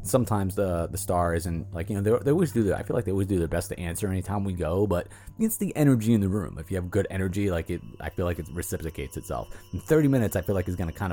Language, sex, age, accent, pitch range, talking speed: English, male, 30-49, American, 85-115 Hz, 295 wpm